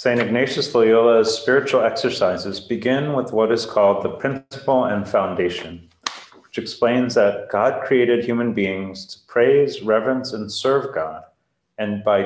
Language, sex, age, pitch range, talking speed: English, male, 30-49, 105-145 Hz, 140 wpm